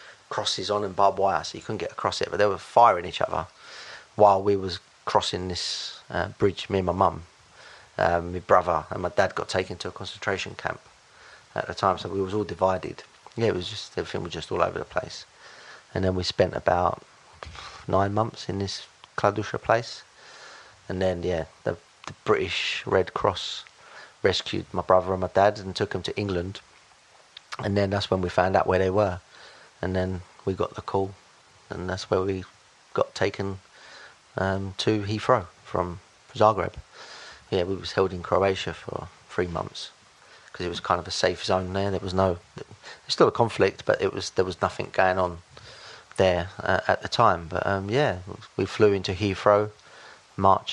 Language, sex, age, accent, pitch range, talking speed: English, male, 30-49, British, 90-105 Hz, 190 wpm